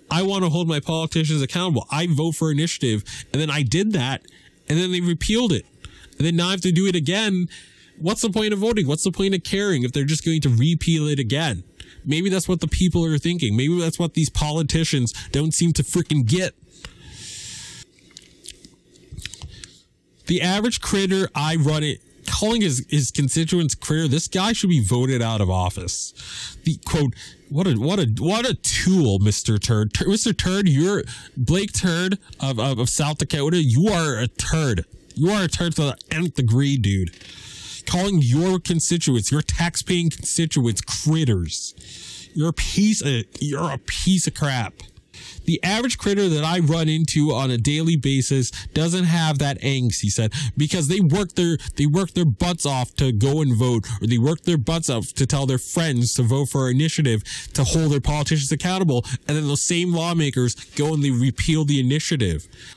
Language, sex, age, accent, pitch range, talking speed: English, male, 20-39, American, 130-175 Hz, 185 wpm